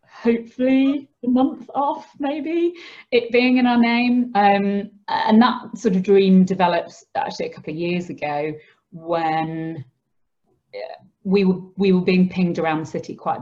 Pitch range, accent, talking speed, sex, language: 155-185 Hz, British, 150 wpm, female, English